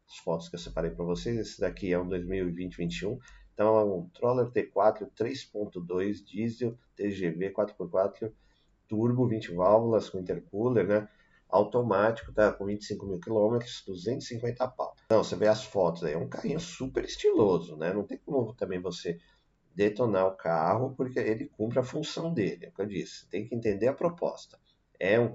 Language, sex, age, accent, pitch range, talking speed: Portuguese, male, 40-59, Brazilian, 90-115 Hz, 175 wpm